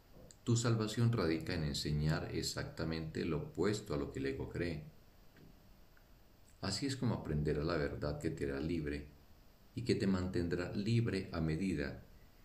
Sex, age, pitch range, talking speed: male, 50-69, 80-110 Hz, 150 wpm